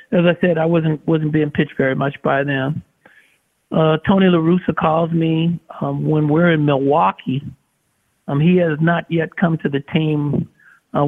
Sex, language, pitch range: male, English, 150-175 Hz